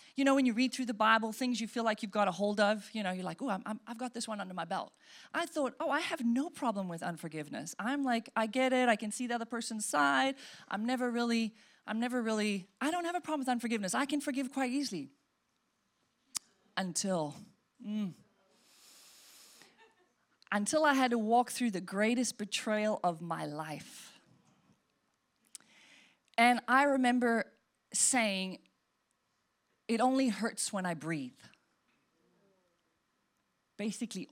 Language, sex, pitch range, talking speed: English, female, 205-270 Hz, 165 wpm